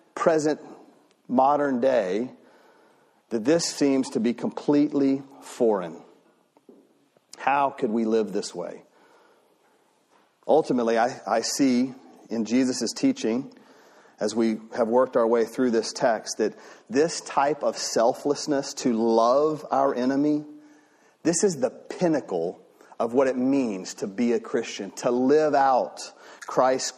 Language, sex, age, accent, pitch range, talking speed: English, male, 40-59, American, 130-185 Hz, 125 wpm